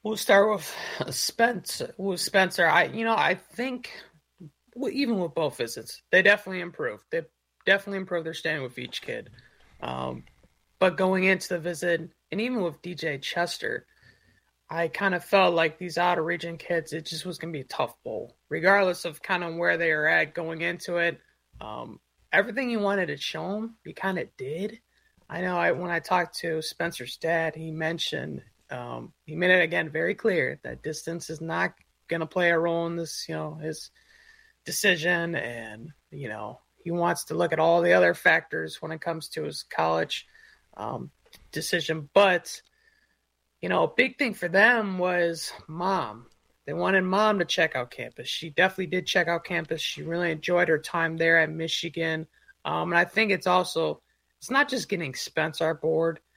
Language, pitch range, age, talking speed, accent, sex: English, 160-195 Hz, 30-49, 185 wpm, American, male